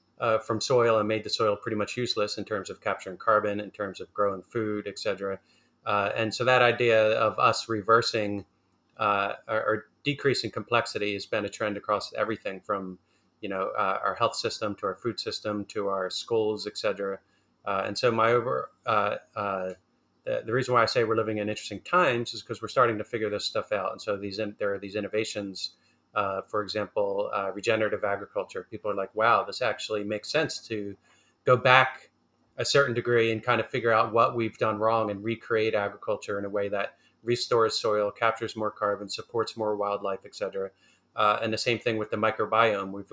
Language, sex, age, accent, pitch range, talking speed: English, male, 30-49, American, 100-115 Hz, 200 wpm